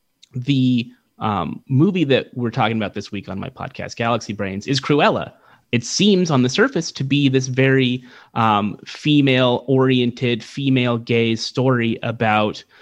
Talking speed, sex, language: 140 wpm, male, English